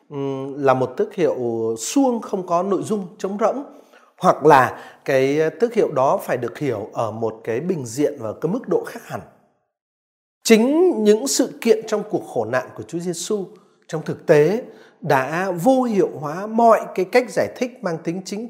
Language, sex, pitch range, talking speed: Vietnamese, male, 155-245 Hz, 185 wpm